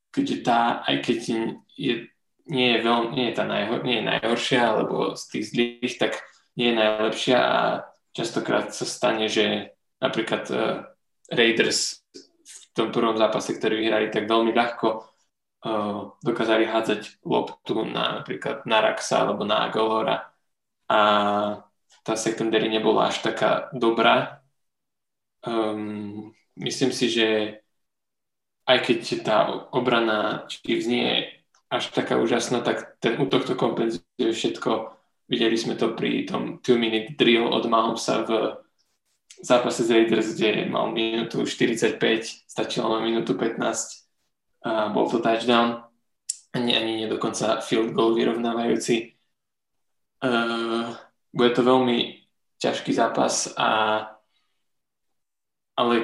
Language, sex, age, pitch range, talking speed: Slovak, male, 10-29, 110-120 Hz, 125 wpm